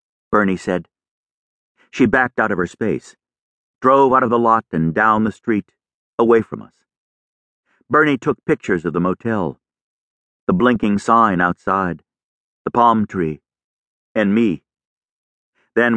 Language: English